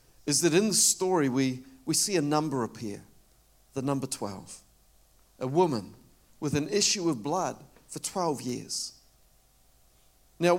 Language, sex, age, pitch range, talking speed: English, male, 50-69, 155-215 Hz, 140 wpm